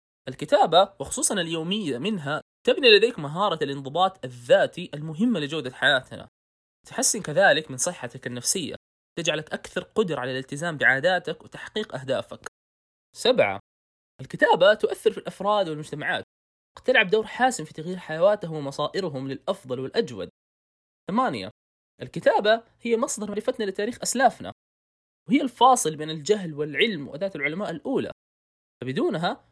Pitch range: 135-215 Hz